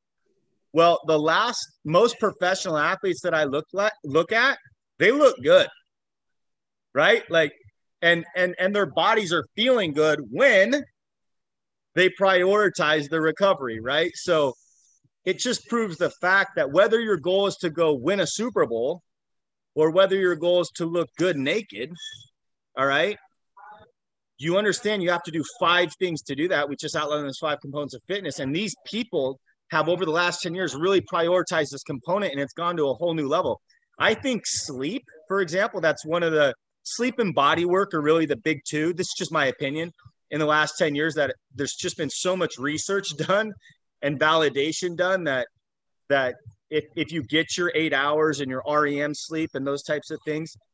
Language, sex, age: English, male, 30-49